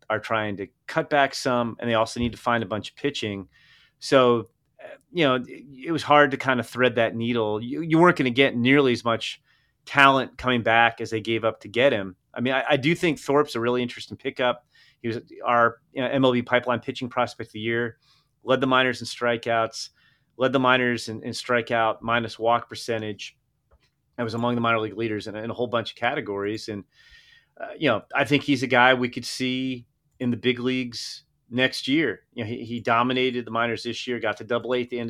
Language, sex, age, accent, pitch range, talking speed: English, male, 30-49, American, 115-135 Hz, 225 wpm